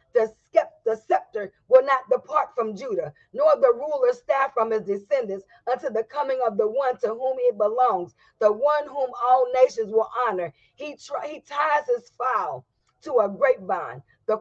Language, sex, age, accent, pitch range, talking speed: English, female, 40-59, American, 215-295 Hz, 170 wpm